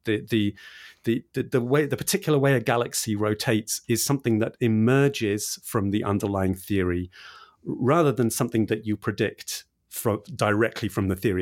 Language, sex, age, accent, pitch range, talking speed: English, male, 40-59, British, 100-130 Hz, 160 wpm